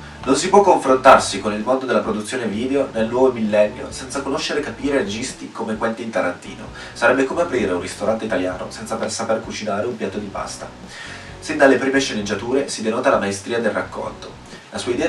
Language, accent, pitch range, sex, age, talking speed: Italian, native, 105-135 Hz, male, 30-49, 190 wpm